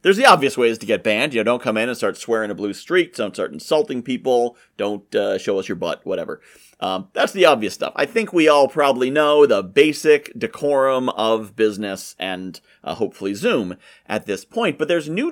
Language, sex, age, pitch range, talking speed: English, male, 30-49, 120-180 Hz, 215 wpm